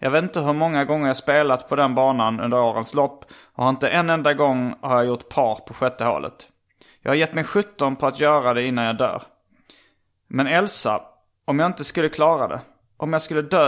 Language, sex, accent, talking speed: Swedish, male, native, 220 wpm